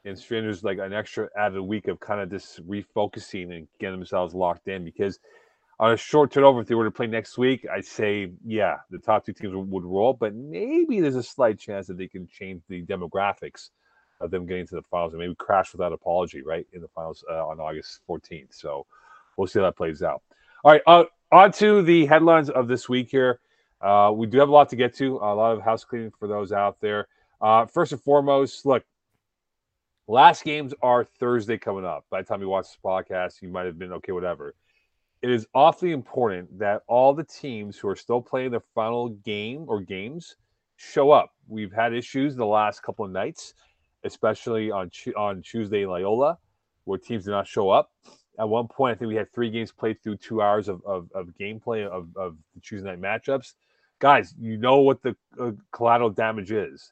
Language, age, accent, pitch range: English, 30-49, American, 100-125 Hz